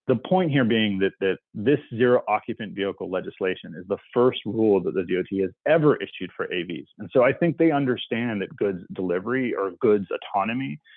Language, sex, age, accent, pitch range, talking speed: English, male, 30-49, American, 95-140 Hz, 190 wpm